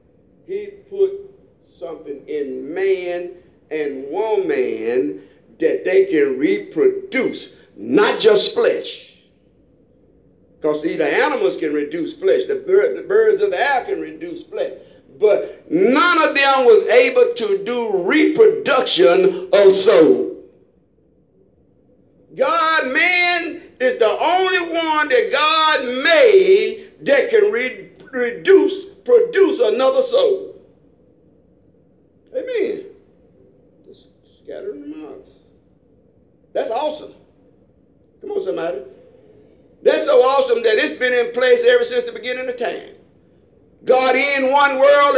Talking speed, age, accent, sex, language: 110 wpm, 50-69, American, male, English